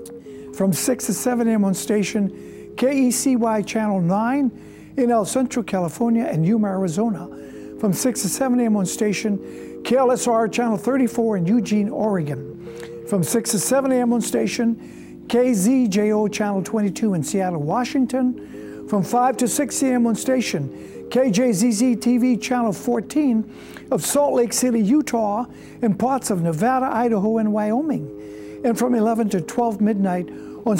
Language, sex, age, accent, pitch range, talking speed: English, male, 60-79, American, 200-245 Hz, 140 wpm